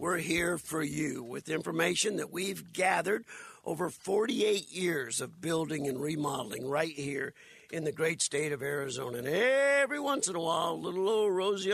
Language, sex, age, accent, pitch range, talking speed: English, male, 60-79, American, 135-175 Hz, 170 wpm